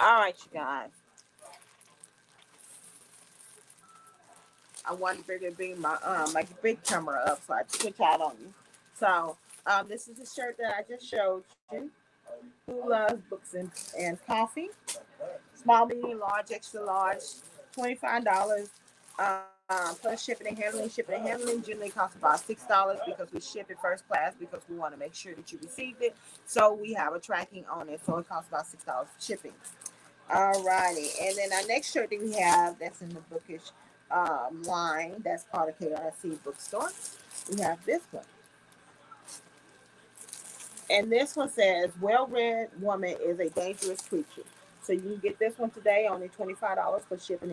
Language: English